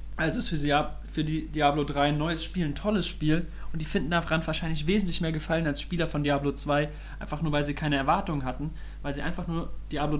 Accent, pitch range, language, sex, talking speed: German, 145-175 Hz, German, male, 235 wpm